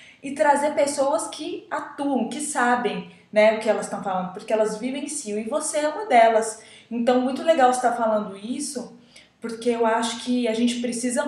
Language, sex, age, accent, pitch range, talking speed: Portuguese, female, 20-39, Brazilian, 200-250 Hz, 185 wpm